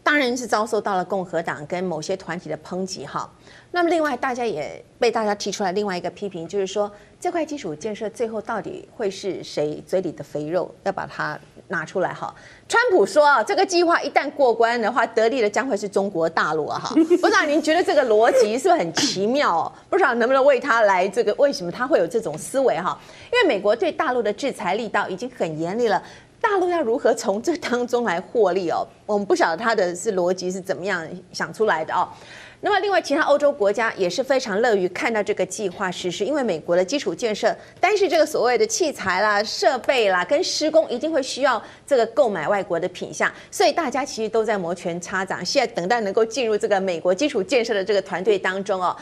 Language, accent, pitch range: Chinese, native, 190-285 Hz